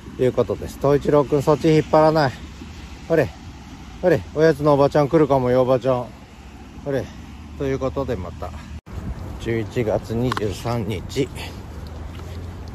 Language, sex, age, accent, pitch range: Japanese, male, 40-59, native, 90-125 Hz